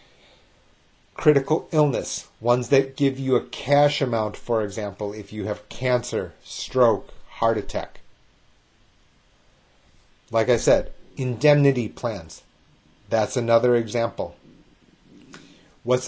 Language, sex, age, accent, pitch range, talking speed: English, male, 30-49, American, 105-140 Hz, 100 wpm